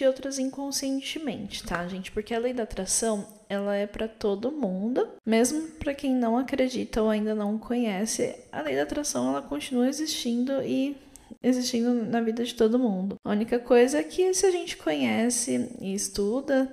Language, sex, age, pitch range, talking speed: Portuguese, female, 10-29, 210-260 Hz, 175 wpm